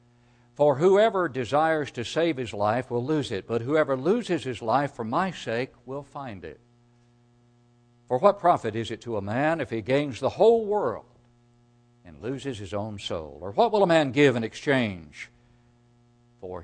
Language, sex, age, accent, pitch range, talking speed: English, male, 60-79, American, 120-155 Hz, 175 wpm